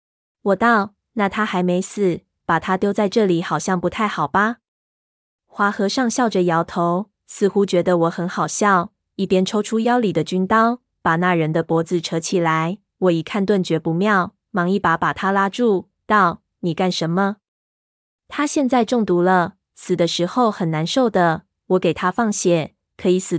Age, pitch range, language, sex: 20-39, 170-210 Hz, Chinese, female